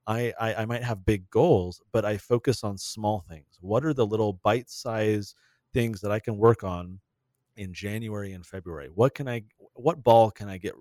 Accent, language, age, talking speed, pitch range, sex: American, English, 40-59, 195 wpm, 100-125 Hz, male